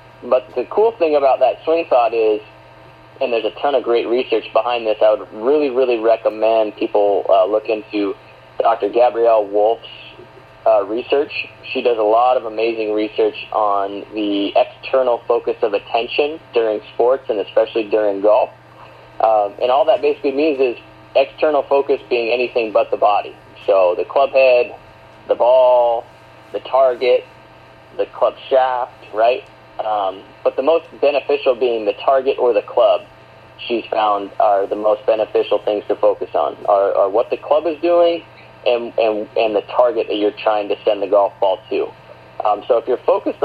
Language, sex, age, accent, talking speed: English, male, 30-49, American, 170 wpm